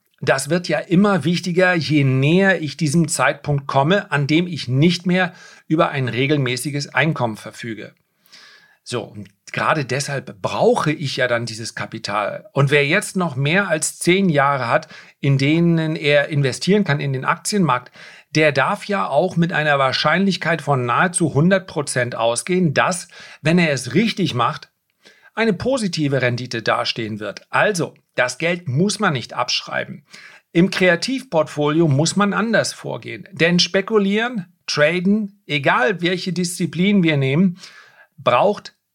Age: 40-59